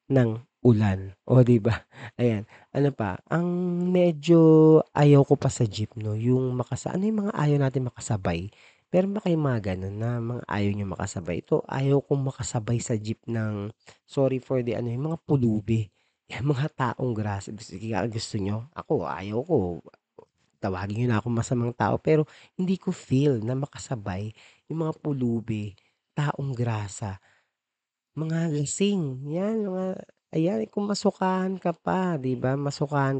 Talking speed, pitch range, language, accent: 145 wpm, 105-145 Hz, Filipino, native